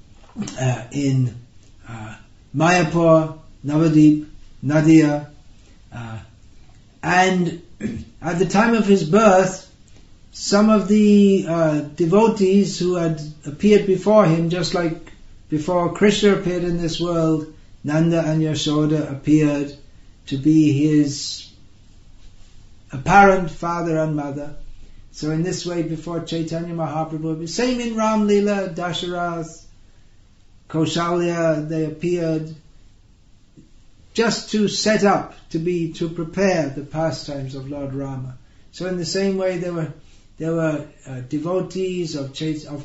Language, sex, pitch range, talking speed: English, male, 140-175 Hz, 120 wpm